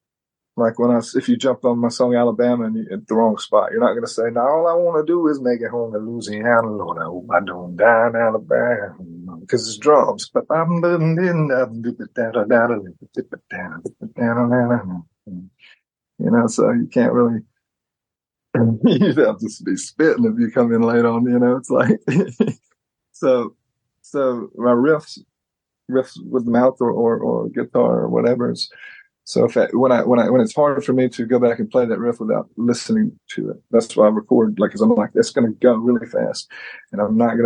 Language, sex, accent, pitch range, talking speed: English, male, American, 115-140 Hz, 190 wpm